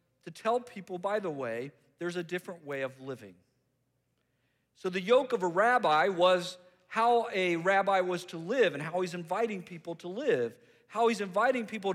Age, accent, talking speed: 50-69, American, 180 wpm